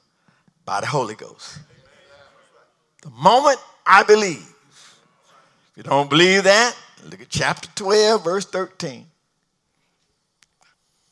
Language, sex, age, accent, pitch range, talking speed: English, male, 50-69, American, 175-225 Hz, 105 wpm